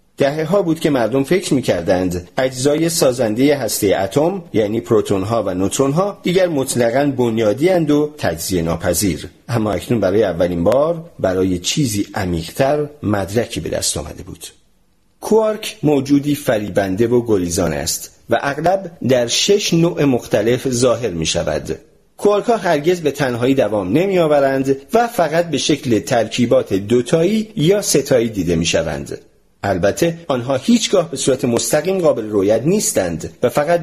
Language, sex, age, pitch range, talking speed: Persian, male, 40-59, 110-170 Hz, 140 wpm